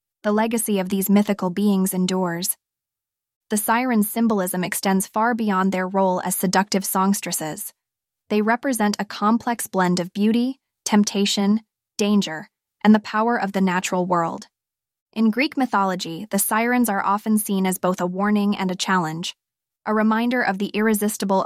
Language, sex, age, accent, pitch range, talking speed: English, female, 20-39, American, 185-210 Hz, 150 wpm